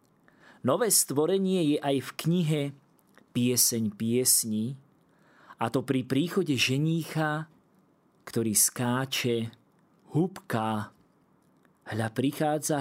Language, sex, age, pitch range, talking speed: Slovak, male, 40-59, 115-145 Hz, 85 wpm